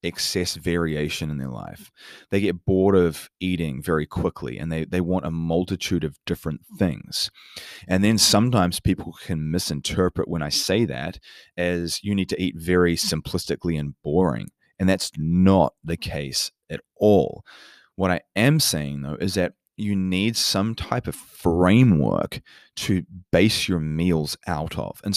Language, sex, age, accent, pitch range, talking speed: English, male, 30-49, Australian, 80-105 Hz, 160 wpm